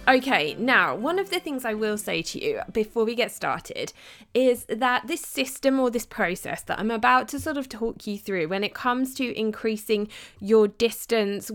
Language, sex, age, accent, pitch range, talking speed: English, female, 20-39, British, 210-260 Hz, 200 wpm